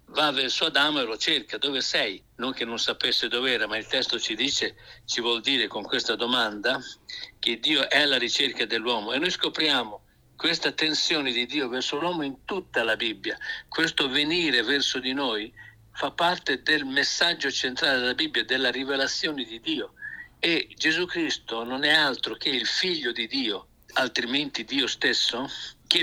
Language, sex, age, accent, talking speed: Italian, male, 60-79, native, 175 wpm